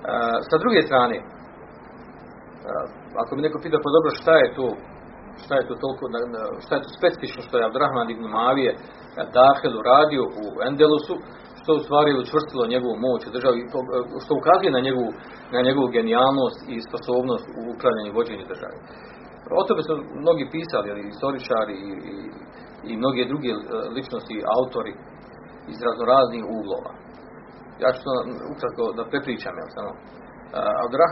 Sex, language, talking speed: male, Croatian, 130 wpm